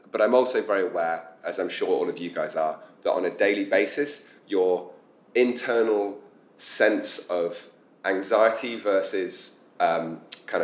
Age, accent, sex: 30-49, British, male